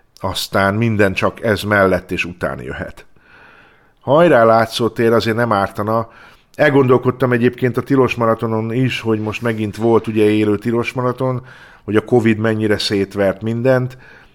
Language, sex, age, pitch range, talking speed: Hungarian, male, 50-69, 95-120 Hz, 130 wpm